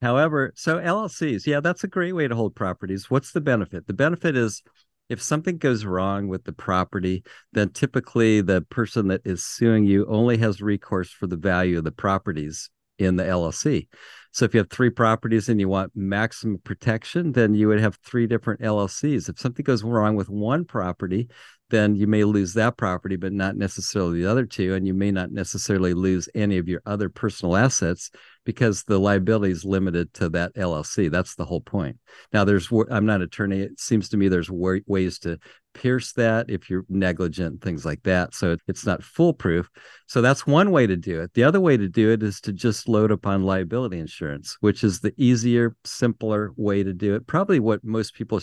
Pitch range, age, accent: 95-120 Hz, 50-69, American